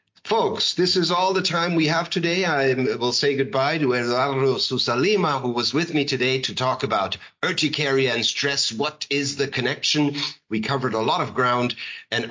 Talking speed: 185 wpm